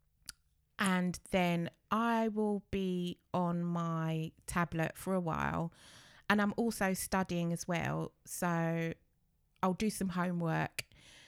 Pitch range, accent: 165-210 Hz, British